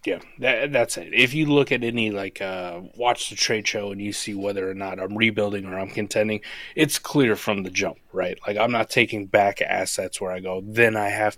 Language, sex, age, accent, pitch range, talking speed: English, male, 30-49, American, 100-125 Hz, 230 wpm